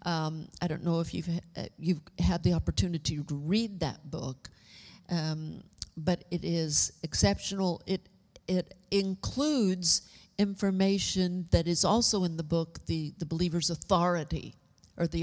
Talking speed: 140 wpm